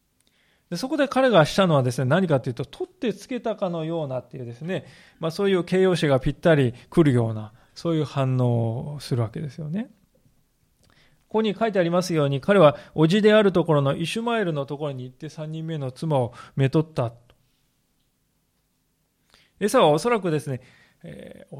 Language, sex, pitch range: Japanese, male, 135-195 Hz